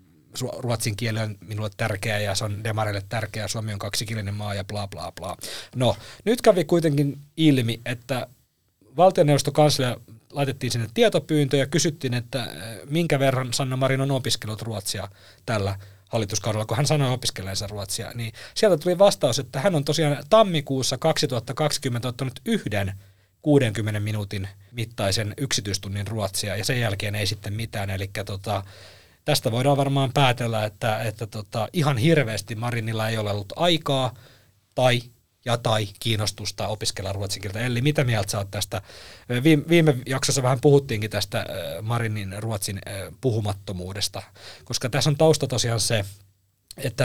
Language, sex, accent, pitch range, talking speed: Finnish, male, native, 105-140 Hz, 140 wpm